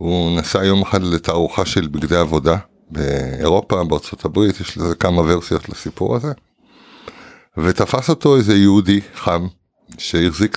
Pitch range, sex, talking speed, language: 85-105 Hz, male, 125 wpm, Hebrew